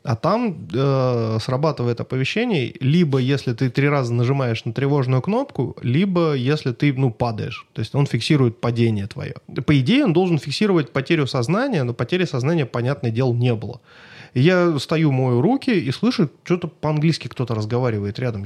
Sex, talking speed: male, 165 wpm